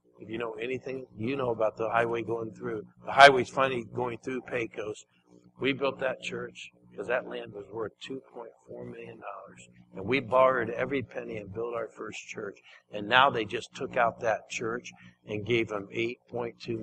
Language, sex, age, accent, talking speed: English, male, 60-79, American, 180 wpm